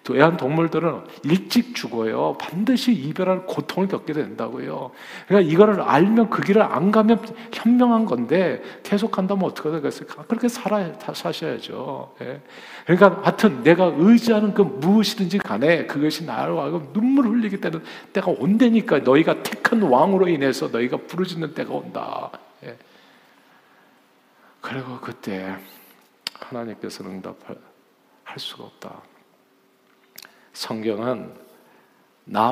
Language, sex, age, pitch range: Korean, male, 50-69, 115-195 Hz